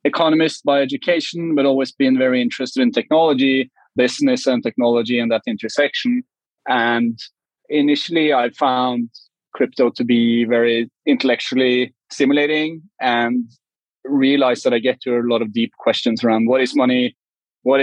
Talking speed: 140 wpm